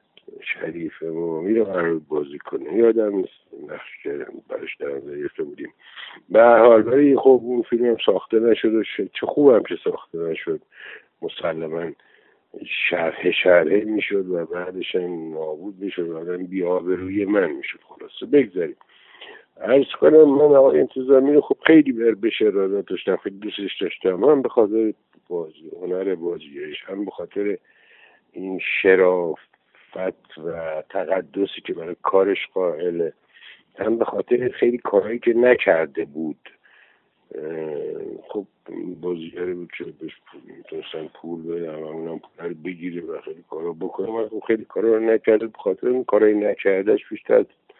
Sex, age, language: male, 60-79, Persian